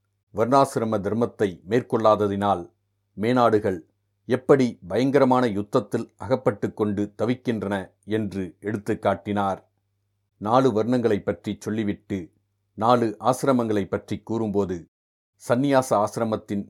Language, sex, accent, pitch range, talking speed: Tamil, male, native, 100-115 Hz, 80 wpm